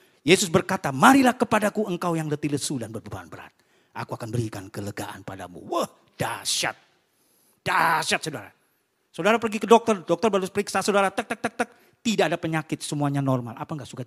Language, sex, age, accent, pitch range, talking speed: Indonesian, male, 40-59, native, 120-170 Hz, 170 wpm